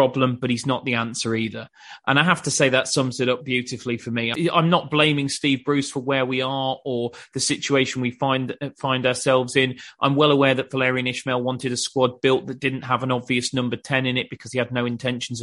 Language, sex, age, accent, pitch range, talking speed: English, male, 30-49, British, 130-155 Hz, 235 wpm